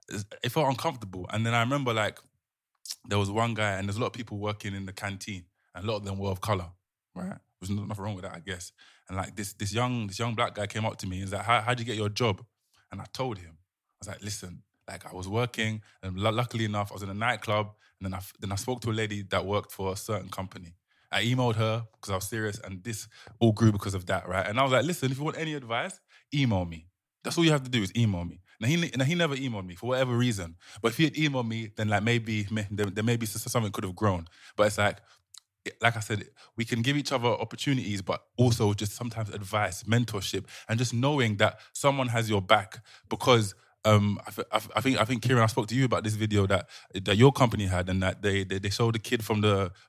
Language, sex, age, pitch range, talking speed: English, male, 20-39, 100-120 Hz, 260 wpm